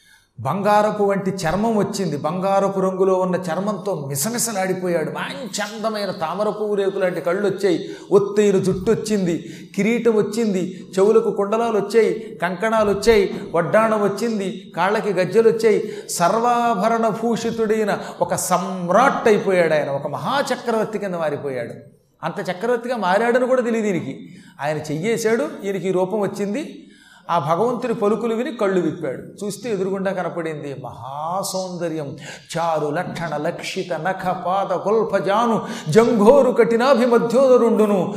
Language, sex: Telugu, male